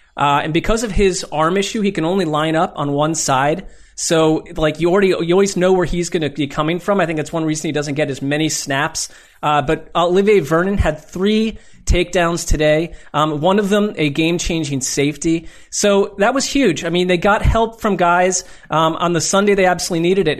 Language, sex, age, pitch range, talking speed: English, male, 30-49, 155-190 Hz, 215 wpm